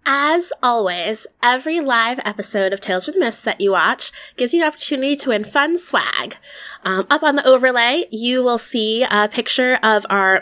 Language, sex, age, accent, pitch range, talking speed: English, female, 20-39, American, 190-255 Hz, 190 wpm